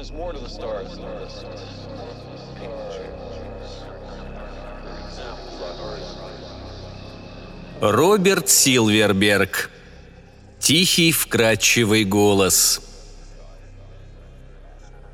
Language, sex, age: Russian, male, 40-59